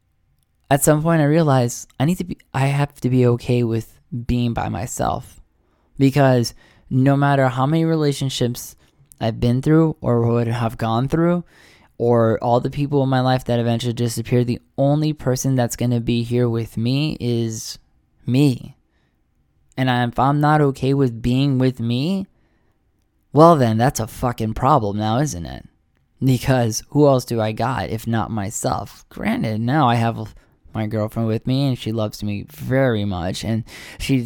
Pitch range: 115-140 Hz